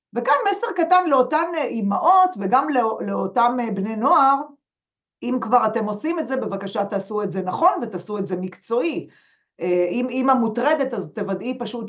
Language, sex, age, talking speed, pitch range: Hebrew, female, 40-59, 150 wpm, 200-270 Hz